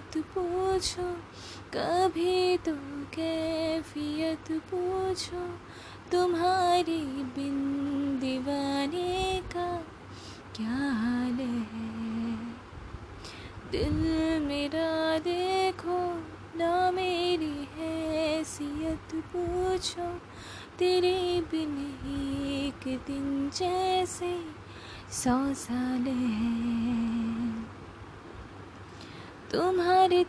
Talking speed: 60 wpm